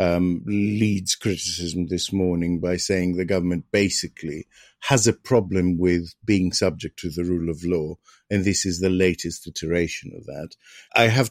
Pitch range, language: 90-125 Hz, English